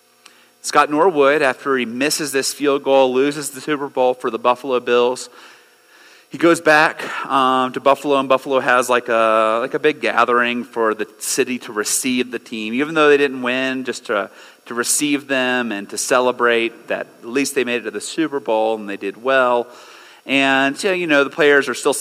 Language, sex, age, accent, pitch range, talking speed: English, male, 30-49, American, 110-140 Hz, 200 wpm